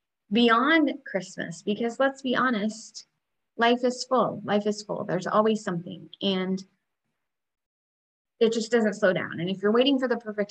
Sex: female